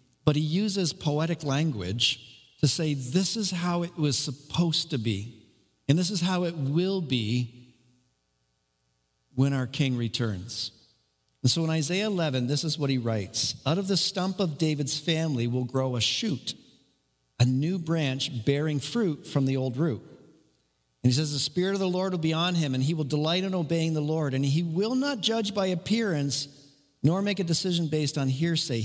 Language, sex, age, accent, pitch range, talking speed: English, male, 50-69, American, 120-170 Hz, 185 wpm